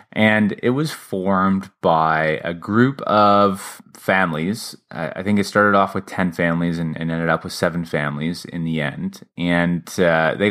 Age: 20-39